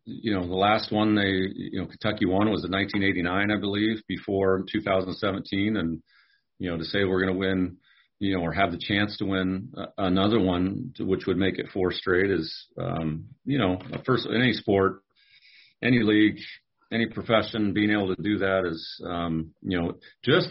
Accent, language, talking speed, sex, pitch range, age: American, English, 195 wpm, male, 90-105 Hz, 40-59